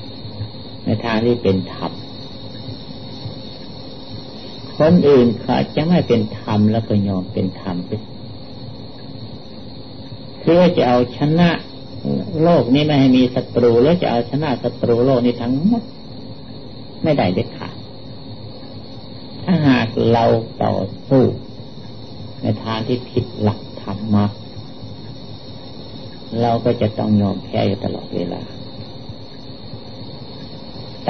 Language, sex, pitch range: Thai, male, 110-130 Hz